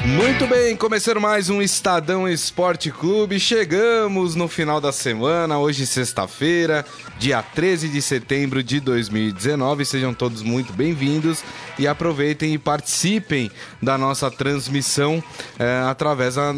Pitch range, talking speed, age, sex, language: 130-180 Hz, 120 wpm, 20-39, male, Portuguese